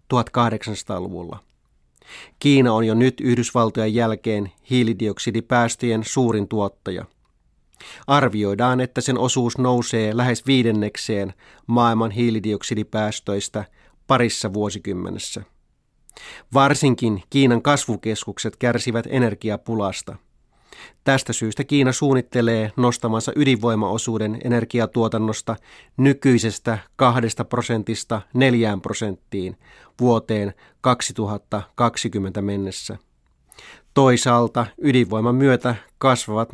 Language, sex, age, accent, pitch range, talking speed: Finnish, male, 30-49, native, 105-125 Hz, 75 wpm